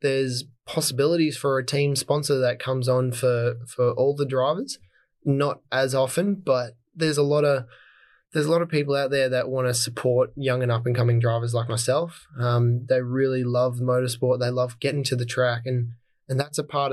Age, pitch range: 20-39, 120-135 Hz